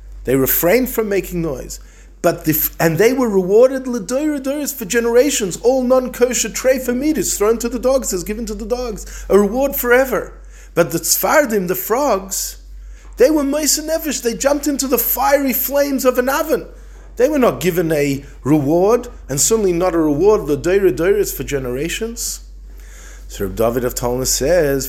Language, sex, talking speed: English, male, 160 wpm